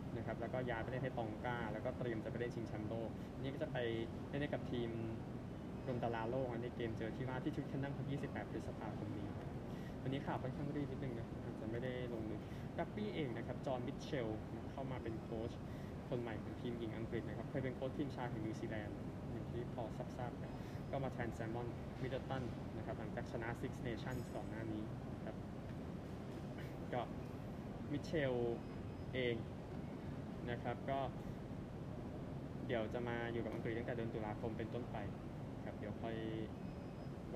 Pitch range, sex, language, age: 115-135 Hz, male, Thai, 20-39